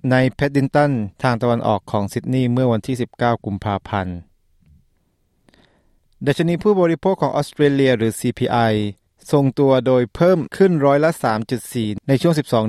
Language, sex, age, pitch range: Thai, male, 20-39, 105-130 Hz